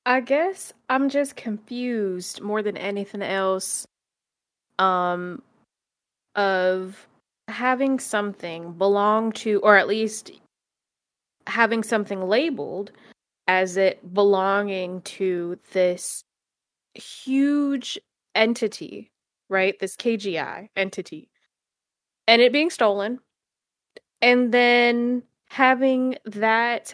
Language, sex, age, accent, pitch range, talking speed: English, female, 20-39, American, 195-230 Hz, 90 wpm